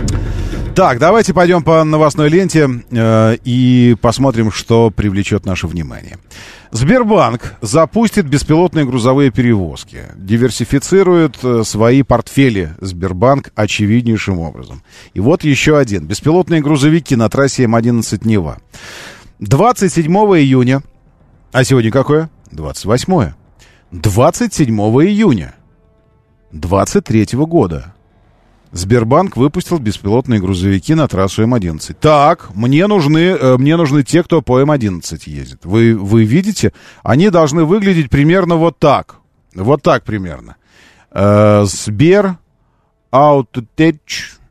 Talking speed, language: 100 wpm, Russian